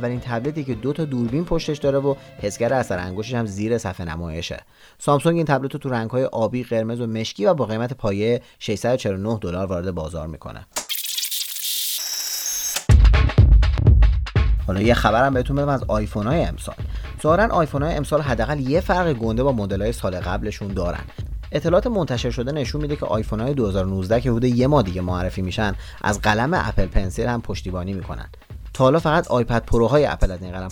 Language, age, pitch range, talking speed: Persian, 30-49, 95-135 Hz, 165 wpm